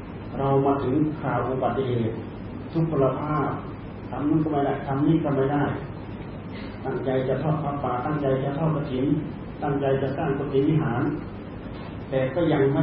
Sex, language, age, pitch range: male, Thai, 40-59, 105-140 Hz